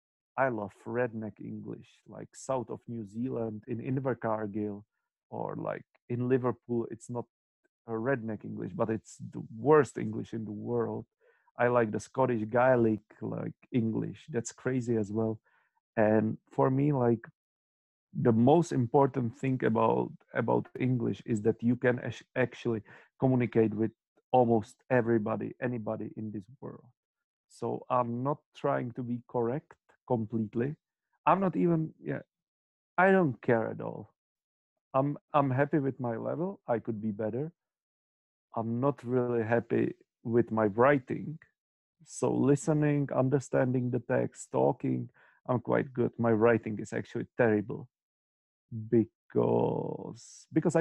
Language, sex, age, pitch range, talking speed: Czech, male, 40-59, 110-130 Hz, 135 wpm